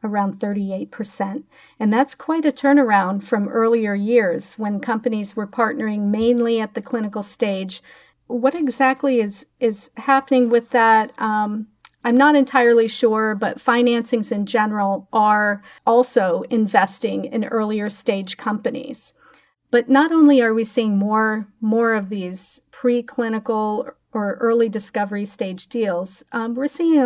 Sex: female